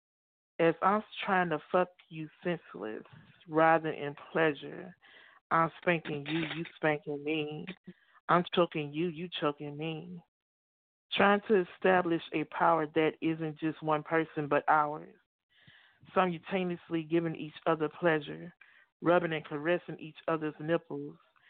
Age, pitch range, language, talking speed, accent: 40-59, 150-180 Hz, English, 125 wpm, American